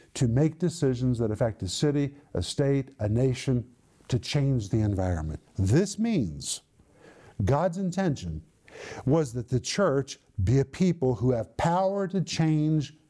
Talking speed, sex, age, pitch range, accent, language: 140 wpm, male, 50-69, 125-170 Hz, American, English